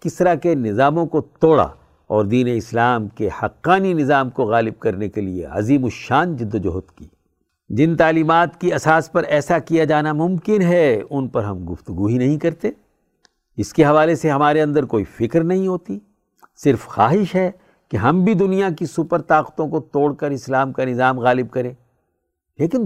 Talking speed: 175 wpm